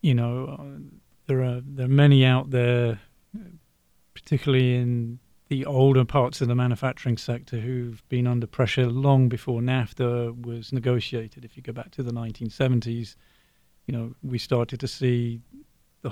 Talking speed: 155 wpm